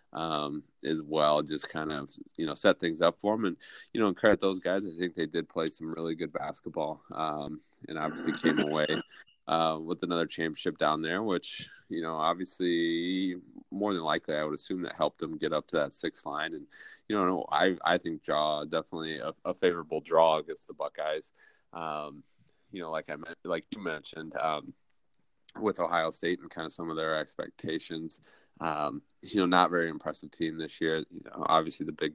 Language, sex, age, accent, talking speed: English, male, 30-49, American, 200 wpm